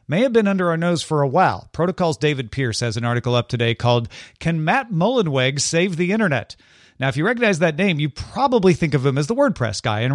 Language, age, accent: English, 40-59, American